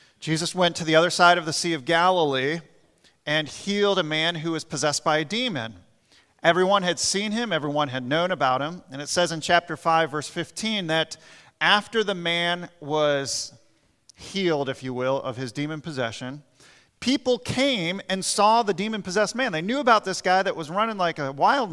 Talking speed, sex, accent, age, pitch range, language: 190 wpm, male, American, 40-59, 155-205 Hz, English